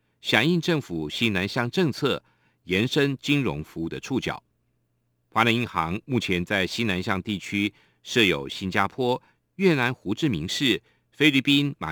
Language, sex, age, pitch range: Chinese, male, 50-69, 90-135 Hz